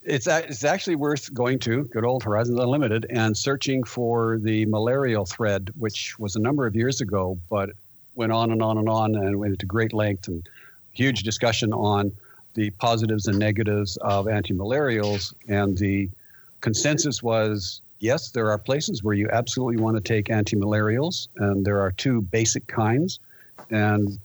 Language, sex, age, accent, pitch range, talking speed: English, male, 50-69, American, 105-125 Hz, 165 wpm